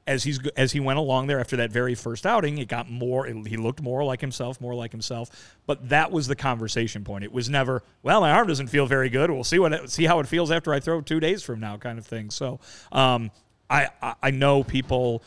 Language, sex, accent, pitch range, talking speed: English, male, American, 120-155 Hz, 250 wpm